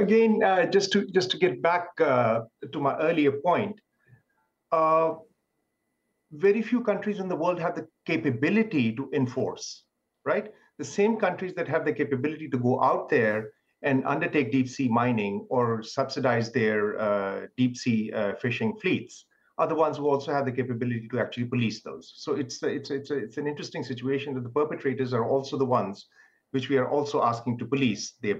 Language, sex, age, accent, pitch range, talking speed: English, male, 50-69, Indian, 130-185 Hz, 185 wpm